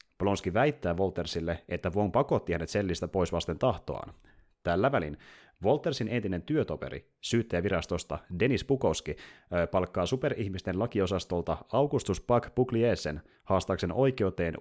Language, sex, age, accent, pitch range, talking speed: Finnish, male, 30-49, native, 85-115 Hz, 105 wpm